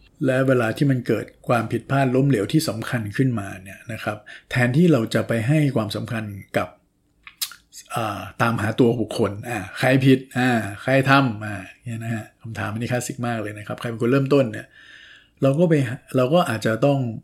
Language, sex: Thai, male